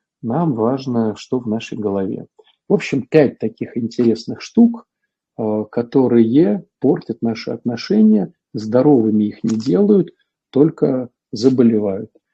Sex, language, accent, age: male, Russian, native, 50-69